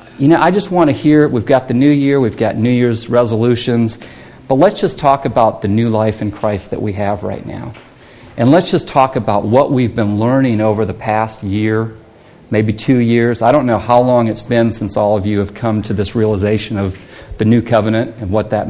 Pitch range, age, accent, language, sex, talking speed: 105-130 Hz, 40-59, American, English, male, 230 wpm